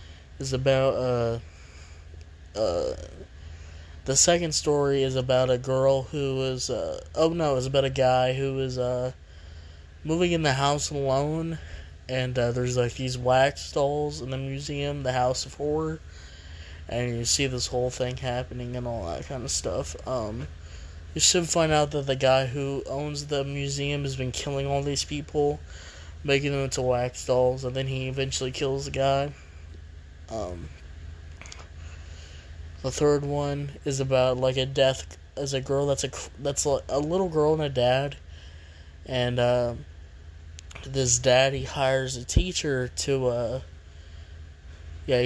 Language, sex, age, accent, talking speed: English, male, 20-39, American, 155 wpm